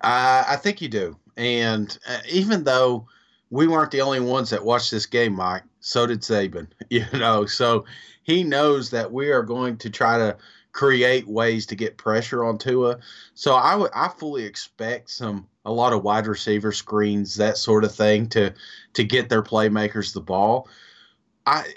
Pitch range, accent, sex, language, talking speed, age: 110-145 Hz, American, male, English, 175 wpm, 30-49